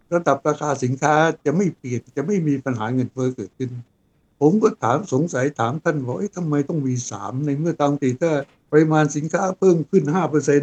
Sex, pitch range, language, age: male, 135-170 Hz, Thai, 60-79